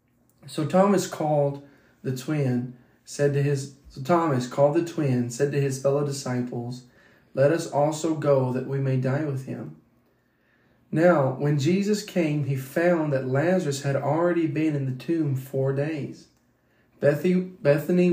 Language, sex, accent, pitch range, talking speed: English, male, American, 130-160 Hz, 150 wpm